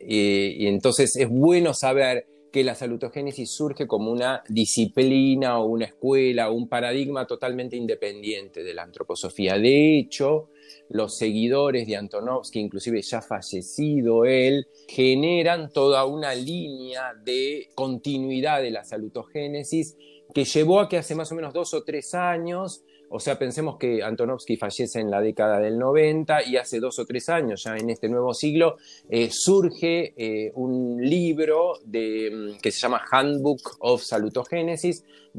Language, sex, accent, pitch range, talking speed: Spanish, male, Argentinian, 115-155 Hz, 145 wpm